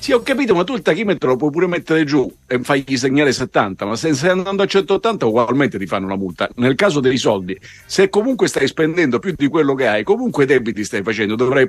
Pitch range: 115-180 Hz